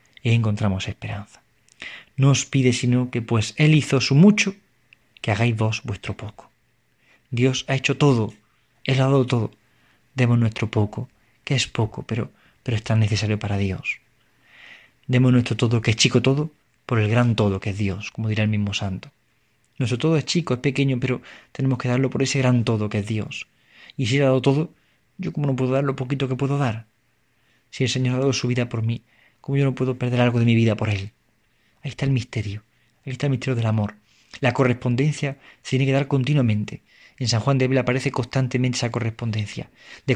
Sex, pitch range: male, 110-130 Hz